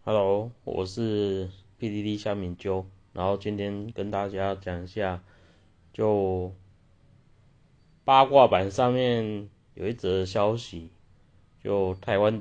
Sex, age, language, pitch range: male, 30-49, Chinese, 95-110 Hz